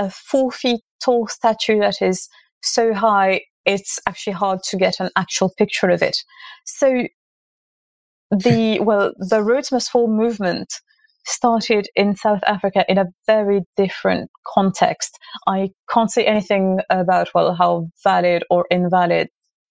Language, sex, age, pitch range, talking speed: English, female, 30-49, 190-240 Hz, 135 wpm